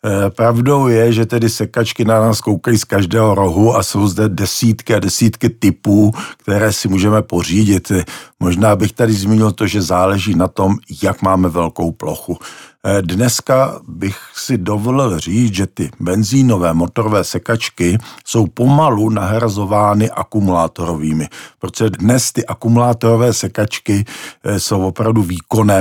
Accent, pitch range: native, 95-115 Hz